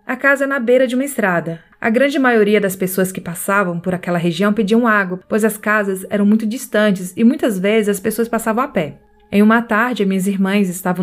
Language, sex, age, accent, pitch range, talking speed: Portuguese, female, 20-39, Brazilian, 190-250 Hz, 220 wpm